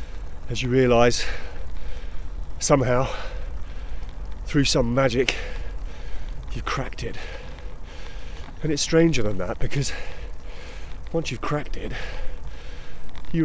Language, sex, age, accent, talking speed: English, male, 30-49, British, 95 wpm